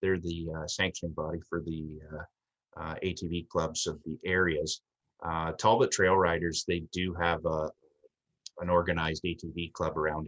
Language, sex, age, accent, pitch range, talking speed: English, male, 30-49, American, 80-95 Hz, 150 wpm